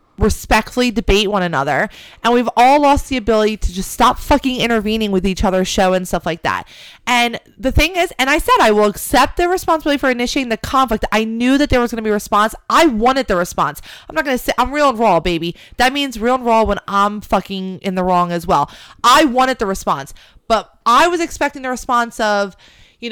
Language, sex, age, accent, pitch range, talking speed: English, female, 20-39, American, 200-260 Hz, 230 wpm